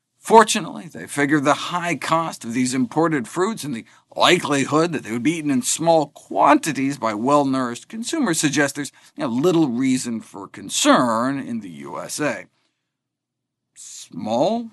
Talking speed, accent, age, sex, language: 140 wpm, American, 50-69, male, English